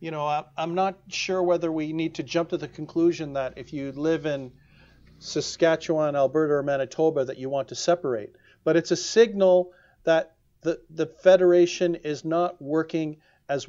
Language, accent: English, American